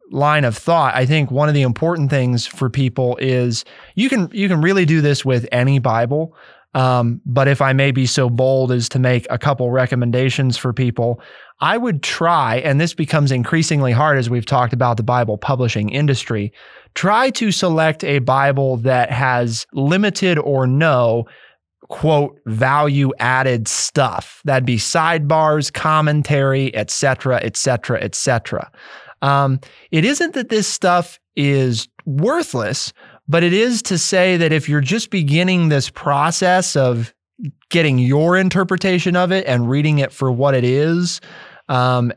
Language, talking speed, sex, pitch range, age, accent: English, 160 wpm, male, 125-165 Hz, 20-39, American